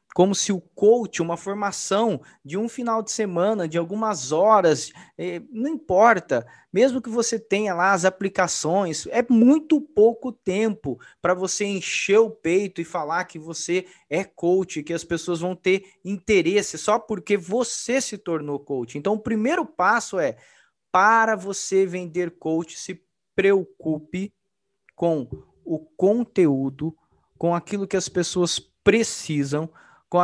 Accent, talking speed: Brazilian, 140 wpm